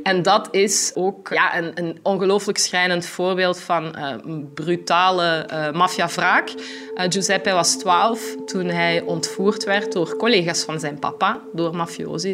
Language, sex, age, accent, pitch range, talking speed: Dutch, female, 20-39, Belgian, 155-190 Hz, 150 wpm